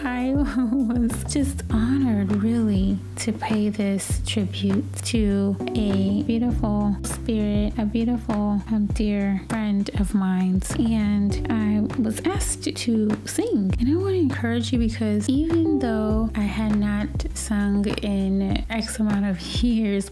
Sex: female